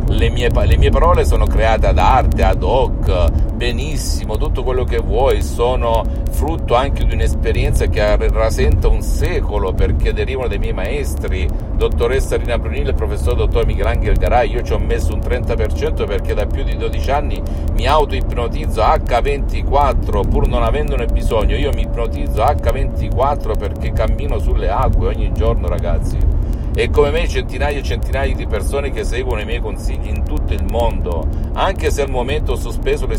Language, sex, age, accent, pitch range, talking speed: Italian, male, 50-69, native, 70-95 Hz, 165 wpm